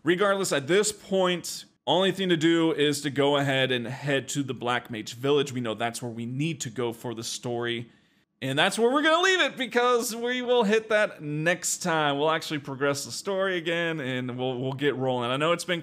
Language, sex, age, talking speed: English, male, 30-49, 225 wpm